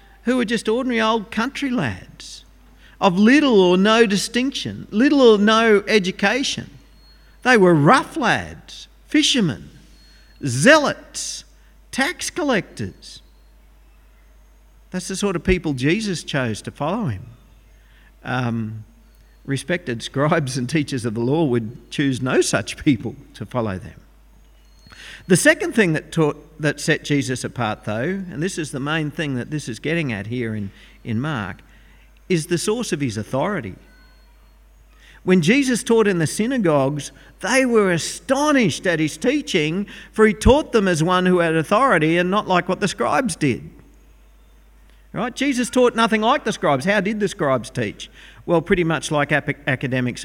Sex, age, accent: male, 50-69, Australian